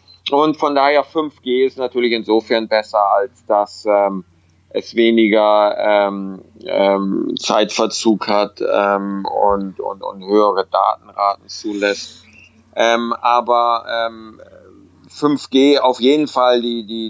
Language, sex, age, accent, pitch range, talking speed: German, male, 30-49, German, 95-115 Hz, 110 wpm